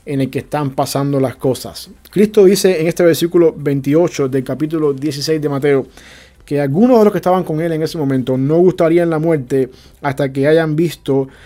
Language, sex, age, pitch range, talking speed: English, male, 30-49, 140-170 Hz, 195 wpm